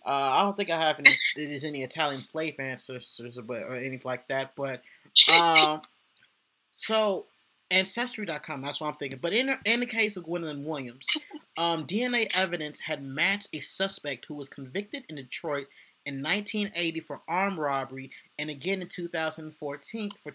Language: English